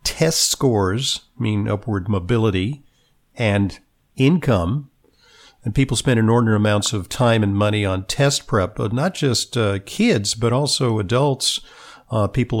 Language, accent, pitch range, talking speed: English, American, 100-120 Hz, 140 wpm